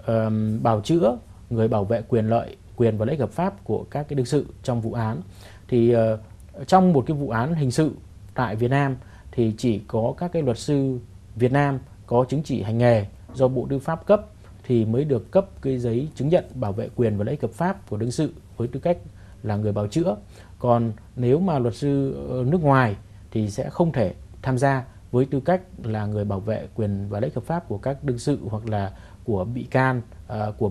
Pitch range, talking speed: 105-135 Hz, 215 wpm